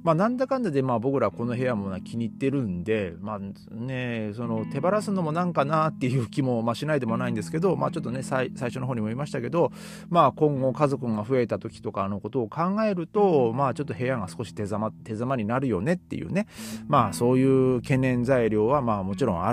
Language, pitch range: Japanese, 100-150 Hz